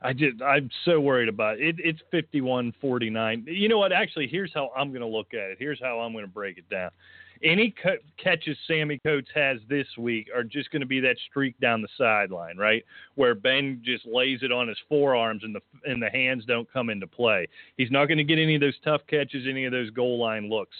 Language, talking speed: English, 240 wpm